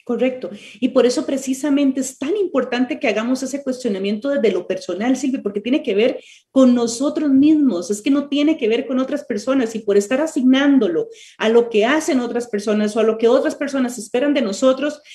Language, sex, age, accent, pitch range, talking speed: Spanish, female, 40-59, Colombian, 225-285 Hz, 200 wpm